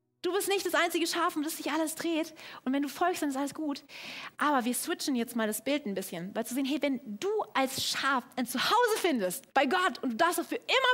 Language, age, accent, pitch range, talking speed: German, 30-49, German, 245-350 Hz, 250 wpm